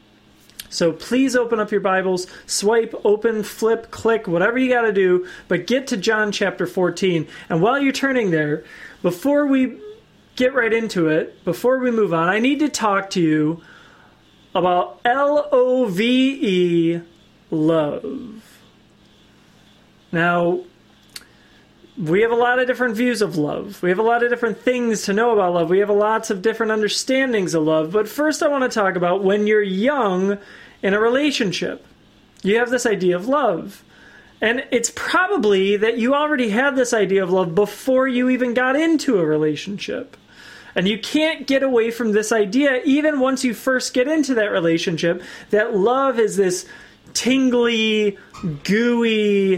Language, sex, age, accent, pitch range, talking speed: English, male, 30-49, American, 185-250 Hz, 160 wpm